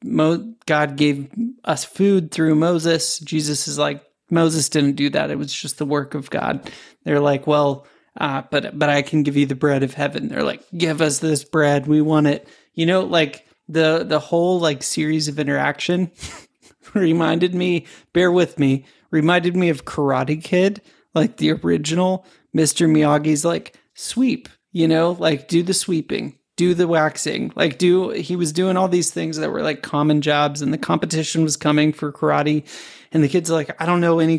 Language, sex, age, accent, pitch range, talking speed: English, male, 30-49, American, 150-175 Hz, 190 wpm